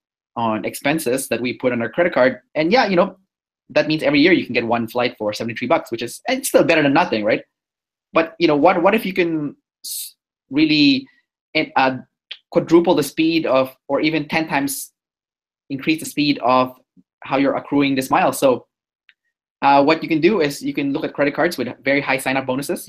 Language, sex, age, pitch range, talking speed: English, male, 20-39, 130-175 Hz, 205 wpm